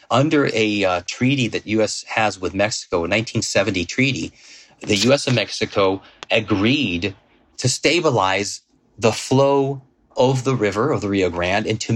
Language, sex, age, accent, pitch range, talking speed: English, male, 40-59, American, 100-130 Hz, 155 wpm